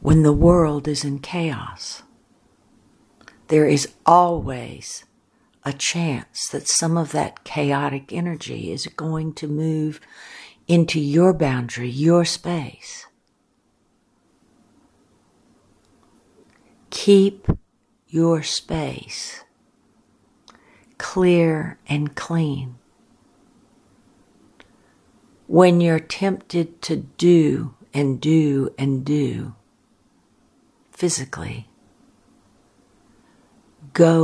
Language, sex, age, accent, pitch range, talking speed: English, female, 60-79, American, 140-165 Hz, 75 wpm